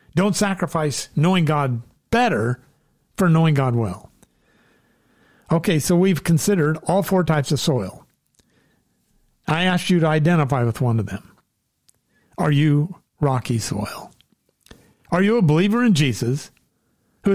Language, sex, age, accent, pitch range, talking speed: English, male, 50-69, American, 140-190 Hz, 130 wpm